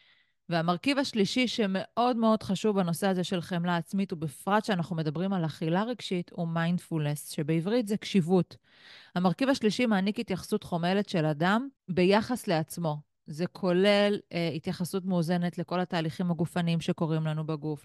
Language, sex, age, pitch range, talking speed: Hebrew, female, 30-49, 170-225 Hz, 140 wpm